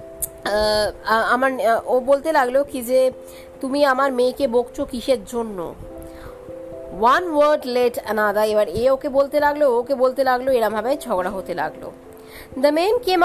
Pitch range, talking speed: 215-285 Hz, 135 wpm